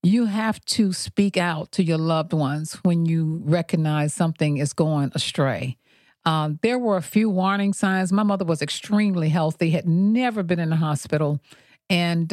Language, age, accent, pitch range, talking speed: English, 50-69, American, 155-195 Hz, 170 wpm